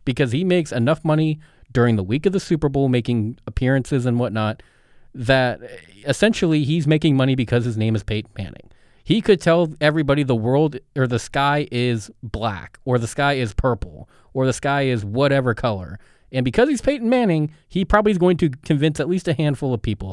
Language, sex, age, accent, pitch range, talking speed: English, male, 30-49, American, 120-160 Hz, 195 wpm